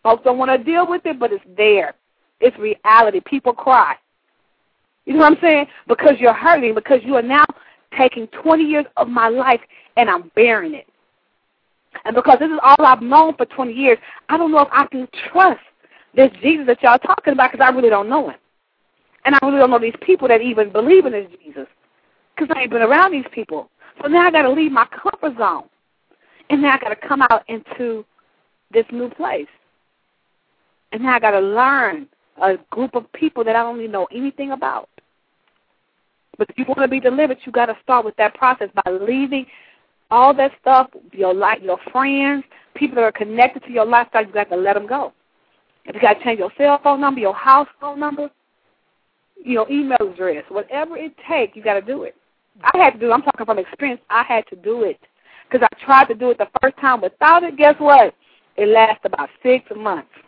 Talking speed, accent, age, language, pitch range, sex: 215 wpm, American, 40-59, English, 225-290 Hz, female